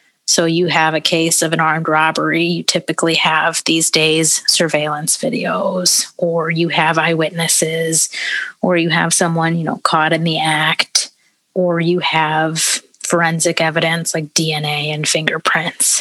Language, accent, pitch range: English, American, 155-175 Hz